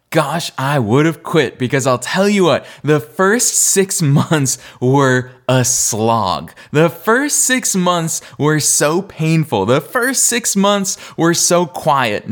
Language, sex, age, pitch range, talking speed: English, male, 20-39, 120-175 Hz, 150 wpm